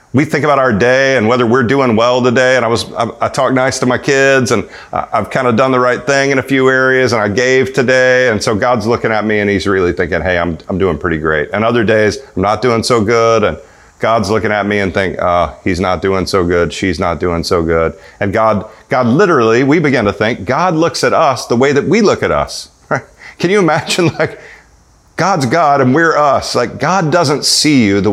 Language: English